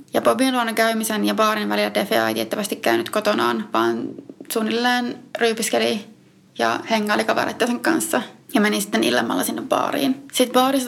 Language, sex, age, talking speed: Finnish, female, 20-39, 155 wpm